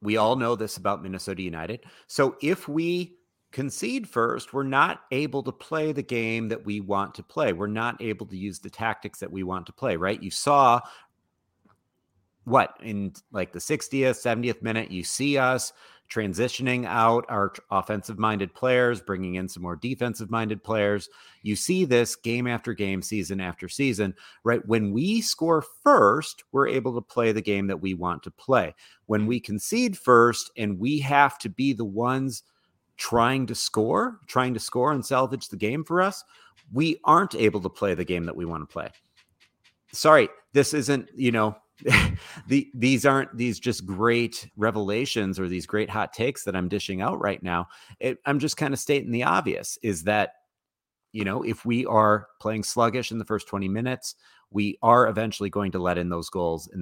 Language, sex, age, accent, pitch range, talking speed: English, male, 40-59, American, 100-130 Hz, 185 wpm